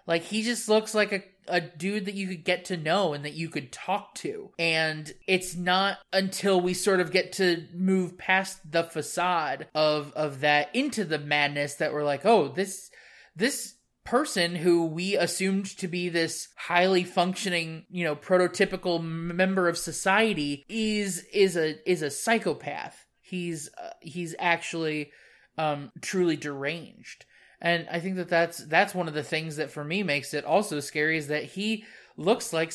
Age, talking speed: 20-39, 175 wpm